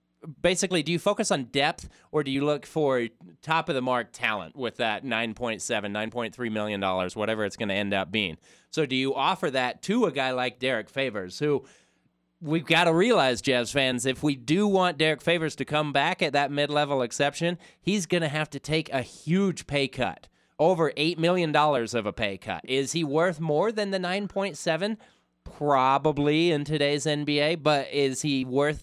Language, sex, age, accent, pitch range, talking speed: English, male, 30-49, American, 130-160 Hz, 185 wpm